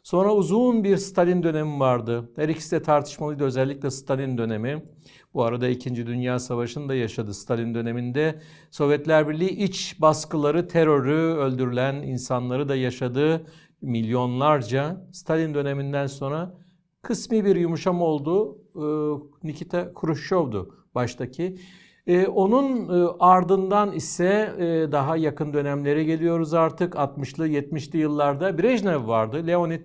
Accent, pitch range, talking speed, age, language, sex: native, 140-180 Hz, 115 wpm, 60-79, Turkish, male